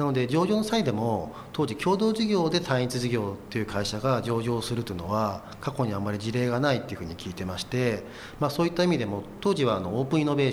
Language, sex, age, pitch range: Japanese, male, 40-59, 105-145 Hz